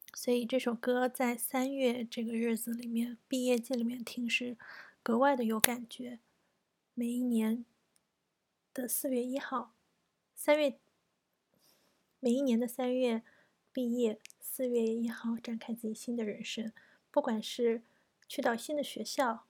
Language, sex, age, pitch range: Chinese, female, 20-39, 225-255 Hz